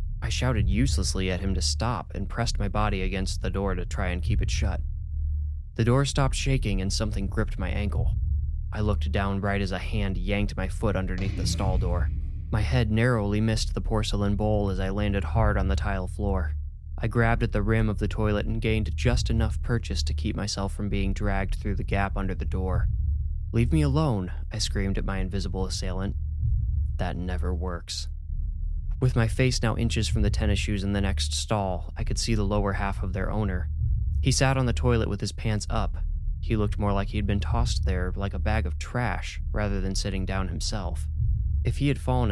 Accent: American